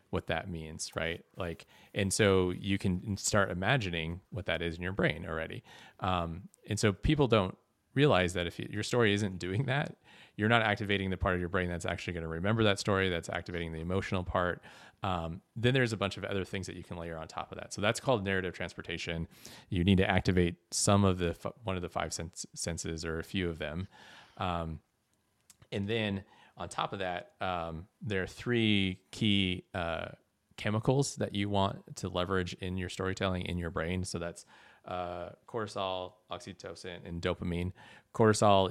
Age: 30-49